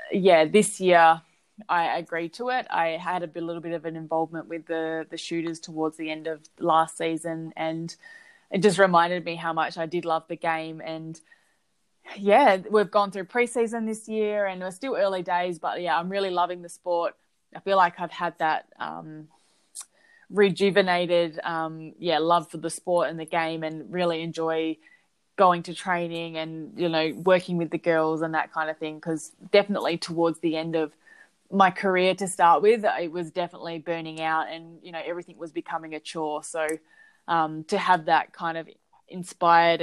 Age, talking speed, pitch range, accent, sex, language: 20-39, 185 wpm, 160-185 Hz, Australian, female, English